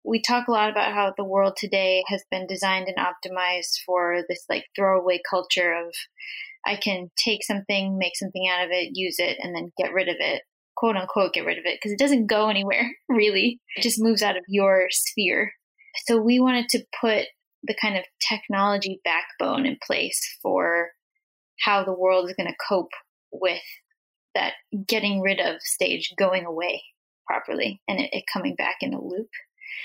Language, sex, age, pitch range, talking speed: English, female, 10-29, 190-235 Hz, 185 wpm